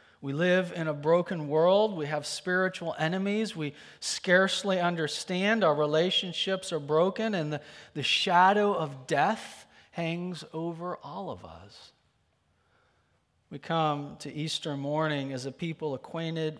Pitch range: 130-170 Hz